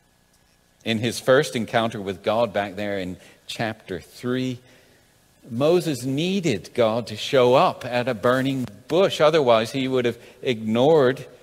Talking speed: 135 wpm